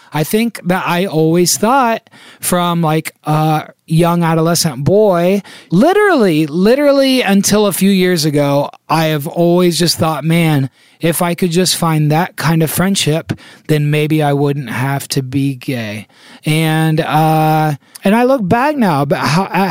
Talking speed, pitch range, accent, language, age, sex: 150 wpm, 145-175 Hz, American, English, 30-49, male